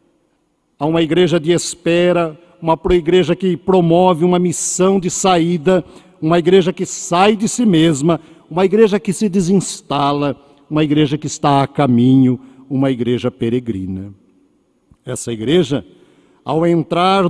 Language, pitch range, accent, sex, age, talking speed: Portuguese, 135-180 Hz, Brazilian, male, 60-79, 130 wpm